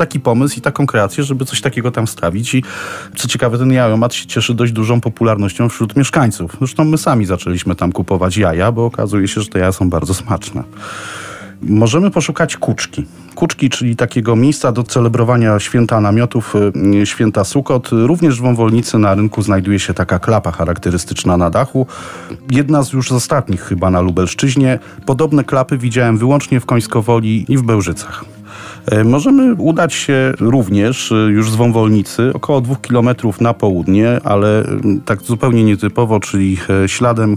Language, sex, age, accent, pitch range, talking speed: Polish, male, 40-59, native, 95-125 Hz, 155 wpm